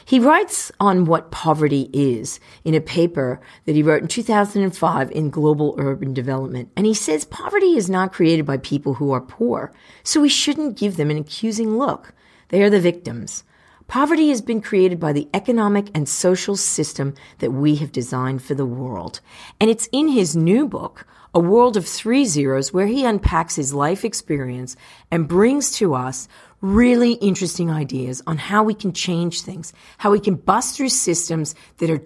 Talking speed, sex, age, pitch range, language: 180 wpm, female, 40-59, 145-205 Hz, English